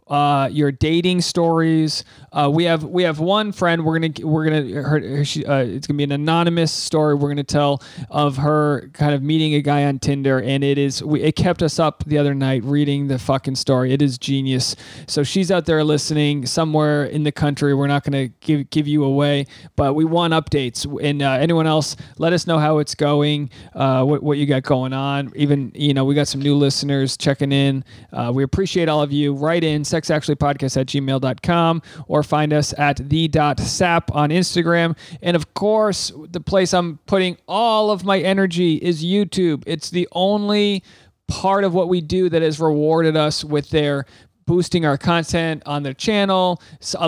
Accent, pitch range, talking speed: American, 145-170 Hz, 200 wpm